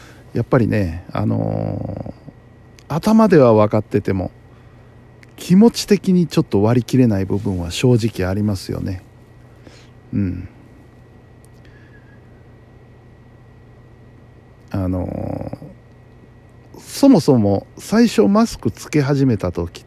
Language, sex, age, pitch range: Japanese, male, 50-69, 110-125 Hz